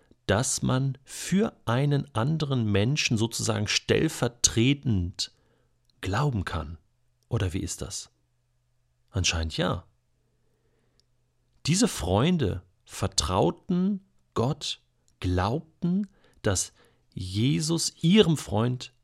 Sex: male